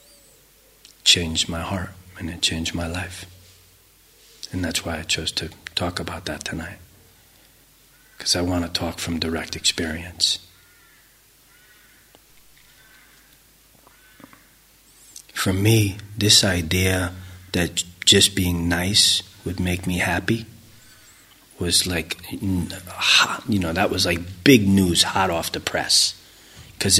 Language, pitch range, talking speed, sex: English, 85-100 Hz, 115 wpm, male